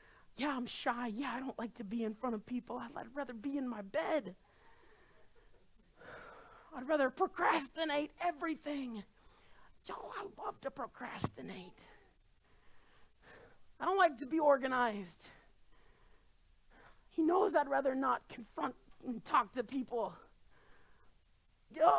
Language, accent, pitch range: English, American, 225-310 Hz